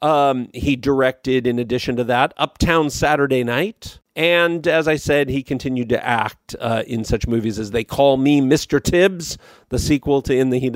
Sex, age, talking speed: male, 40-59, 190 wpm